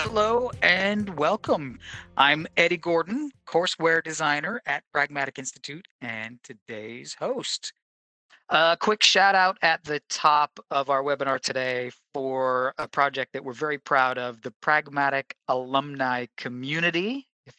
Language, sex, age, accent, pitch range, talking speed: English, male, 40-59, American, 125-155 Hz, 130 wpm